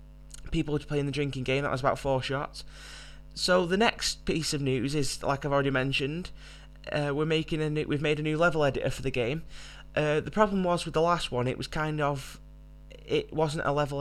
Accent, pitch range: British, 130-150 Hz